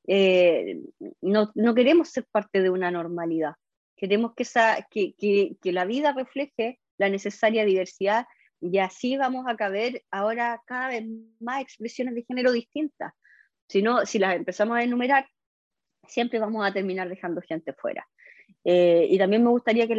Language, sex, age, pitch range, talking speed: Spanish, female, 20-39, 185-240 Hz, 160 wpm